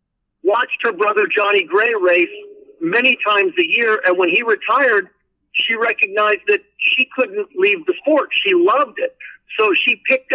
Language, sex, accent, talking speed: English, male, American, 160 wpm